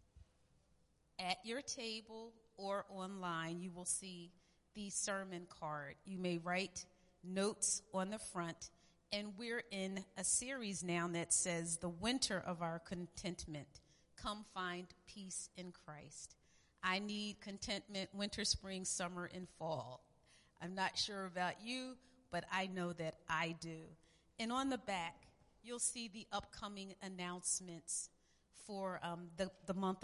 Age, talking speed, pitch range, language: 40-59, 140 wpm, 175-210 Hz, English